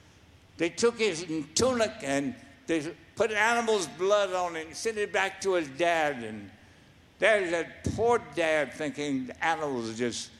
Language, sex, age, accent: English, male, 60-79, American